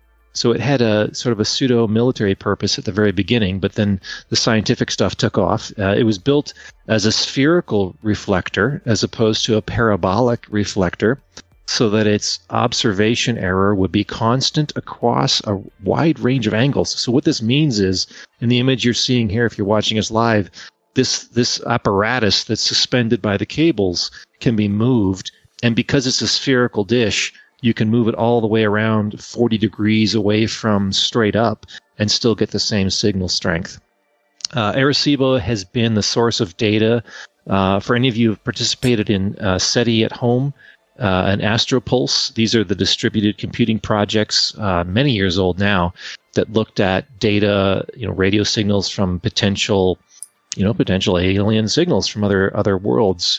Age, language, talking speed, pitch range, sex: 40-59, English, 175 wpm, 100-120 Hz, male